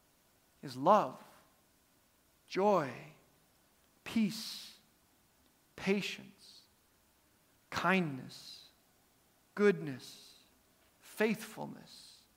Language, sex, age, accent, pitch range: English, male, 50-69, American, 170-215 Hz